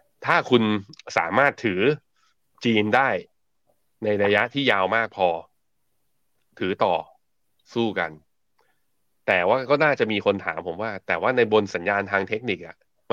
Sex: male